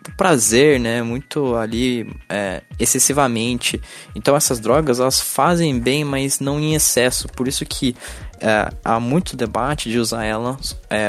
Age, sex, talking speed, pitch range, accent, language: 20-39, male, 145 wpm, 110-140 Hz, Brazilian, Portuguese